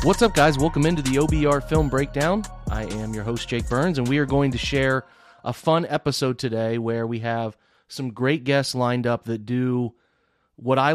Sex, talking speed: male, 205 wpm